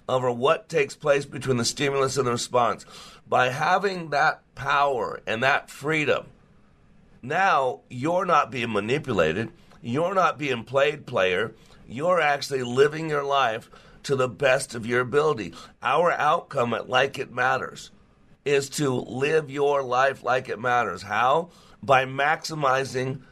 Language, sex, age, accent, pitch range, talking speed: English, male, 50-69, American, 120-140 Hz, 140 wpm